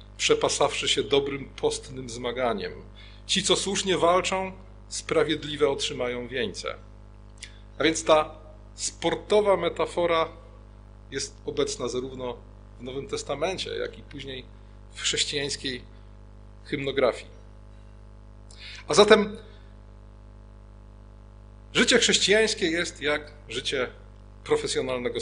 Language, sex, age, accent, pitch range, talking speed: Polish, male, 40-59, native, 105-170 Hz, 90 wpm